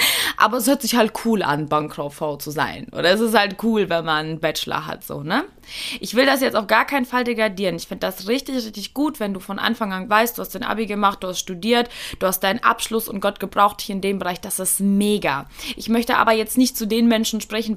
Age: 20-39